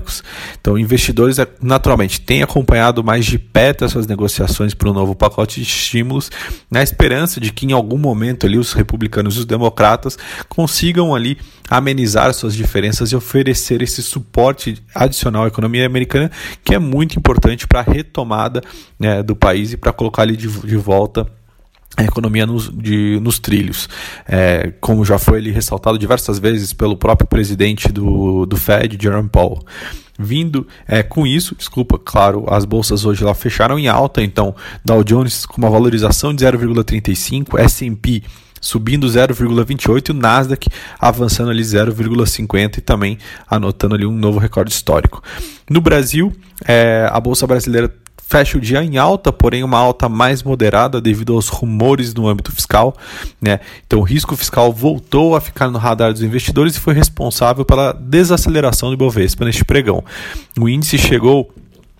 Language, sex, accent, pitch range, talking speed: Portuguese, male, Brazilian, 105-130 Hz, 160 wpm